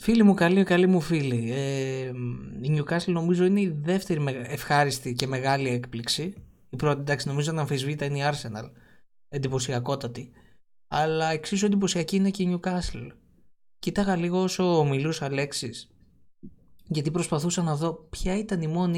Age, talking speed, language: 20-39, 150 wpm, Greek